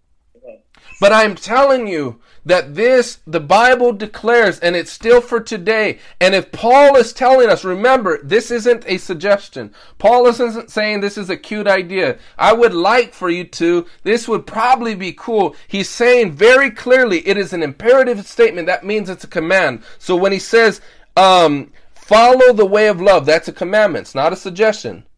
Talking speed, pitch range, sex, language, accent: 180 wpm, 150-220 Hz, male, English, American